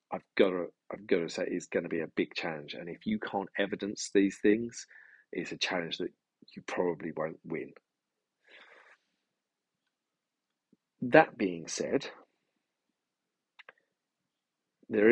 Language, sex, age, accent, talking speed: English, male, 40-59, British, 130 wpm